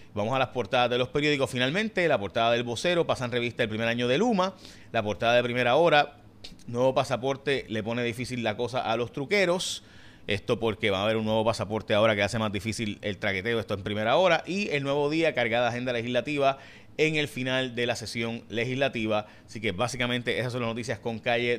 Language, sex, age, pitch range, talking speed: Spanish, male, 30-49, 105-135 Hz, 215 wpm